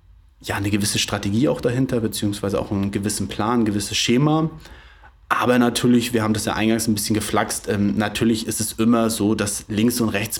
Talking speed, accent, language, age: 195 wpm, German, German, 30-49